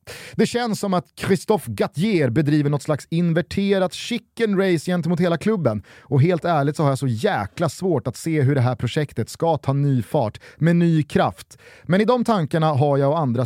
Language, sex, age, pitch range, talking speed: Swedish, male, 30-49, 135-190 Hz, 200 wpm